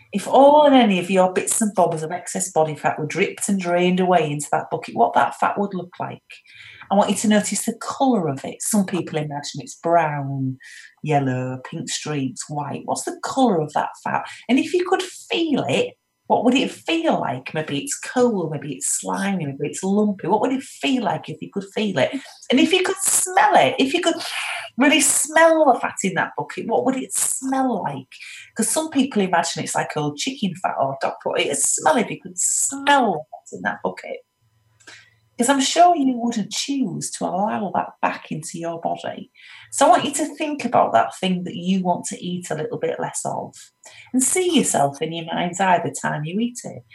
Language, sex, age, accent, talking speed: English, female, 30-49, British, 215 wpm